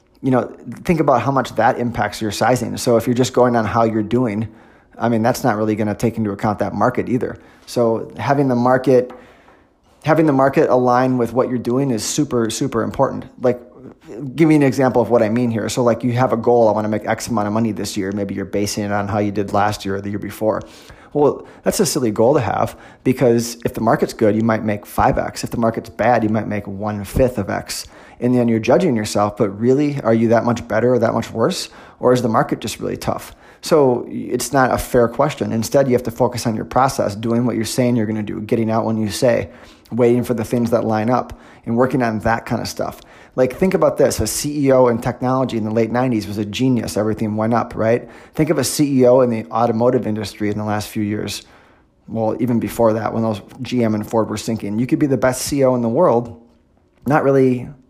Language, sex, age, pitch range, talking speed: English, male, 20-39, 110-125 Hz, 240 wpm